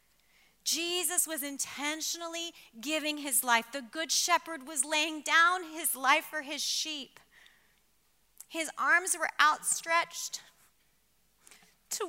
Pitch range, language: 200-290 Hz, English